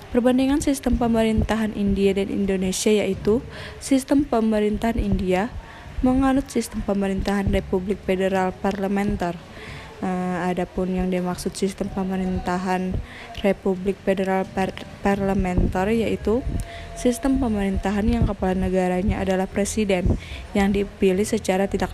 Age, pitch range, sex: 20-39, 190-220 Hz, female